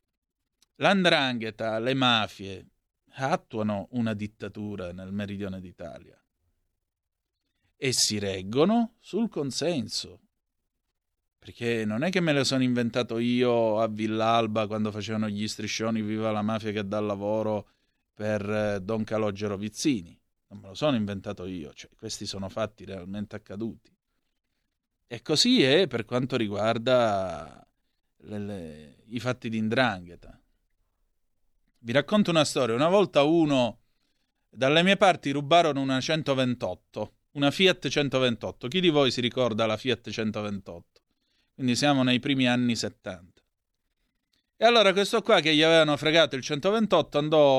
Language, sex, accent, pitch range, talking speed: Italian, male, native, 105-130 Hz, 130 wpm